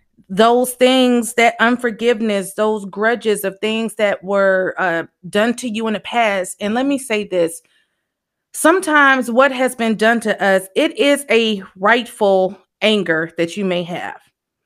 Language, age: English, 30-49